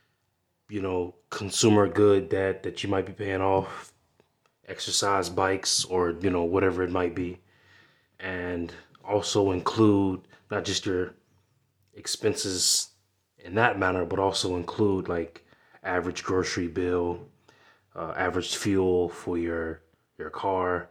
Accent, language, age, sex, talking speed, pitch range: American, English, 20-39, male, 125 wpm, 90-100 Hz